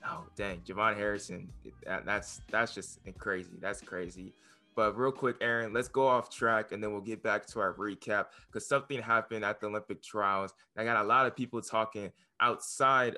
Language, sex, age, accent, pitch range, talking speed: English, male, 20-39, American, 100-115 Hz, 190 wpm